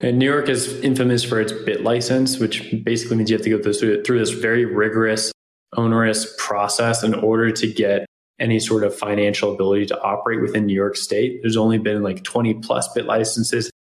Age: 20-39